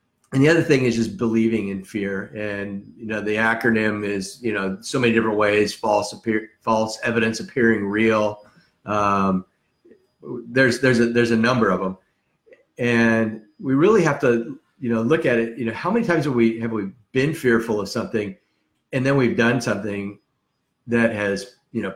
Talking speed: 185 wpm